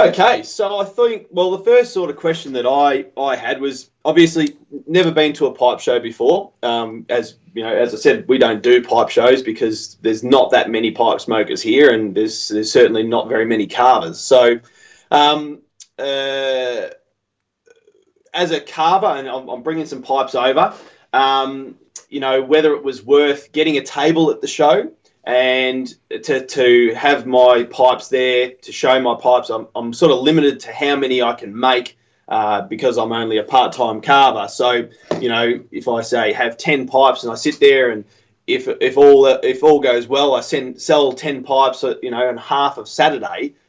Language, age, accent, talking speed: English, 20-39, Australian, 190 wpm